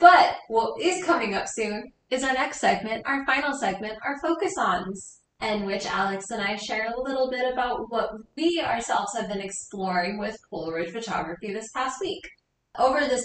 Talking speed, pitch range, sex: 180 wpm, 195-250 Hz, female